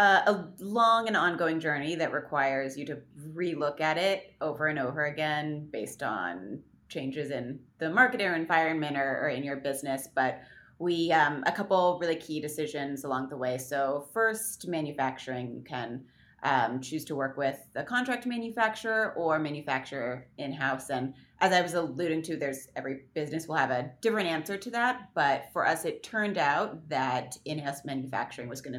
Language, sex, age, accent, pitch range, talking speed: English, female, 30-49, American, 135-175 Hz, 175 wpm